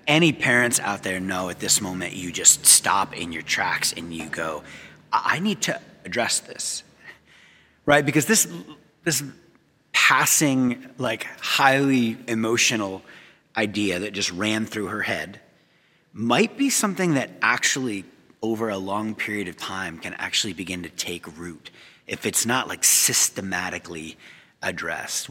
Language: English